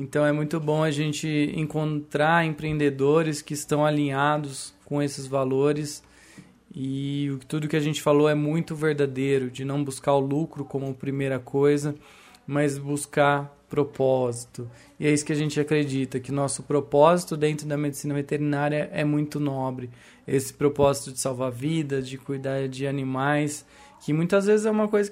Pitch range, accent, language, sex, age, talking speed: 145-180 Hz, Brazilian, English, male, 20-39, 160 wpm